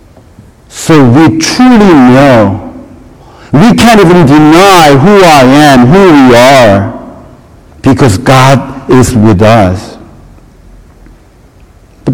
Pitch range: 110-160 Hz